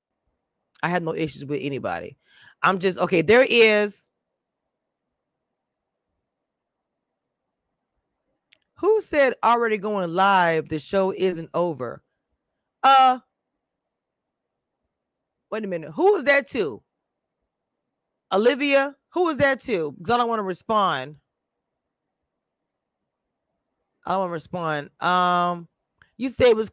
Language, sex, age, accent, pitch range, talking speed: English, female, 30-49, American, 165-240 Hz, 110 wpm